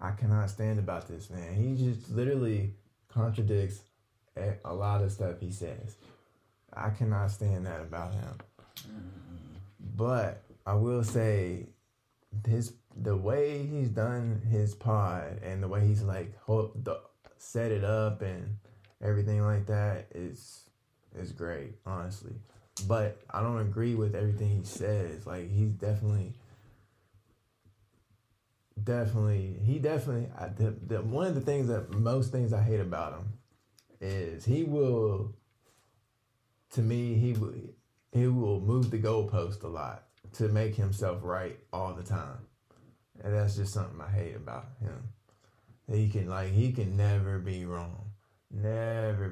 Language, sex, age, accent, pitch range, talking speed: English, male, 20-39, American, 100-115 Hz, 140 wpm